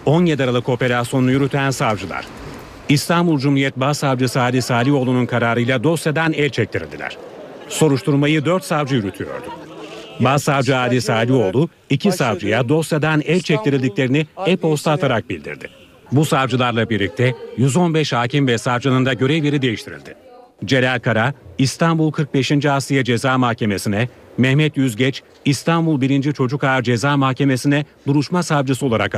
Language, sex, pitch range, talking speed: Turkish, male, 125-150 Hz, 120 wpm